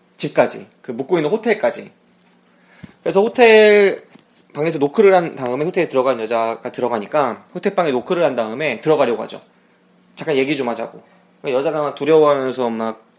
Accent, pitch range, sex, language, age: native, 130-195 Hz, male, Korean, 20-39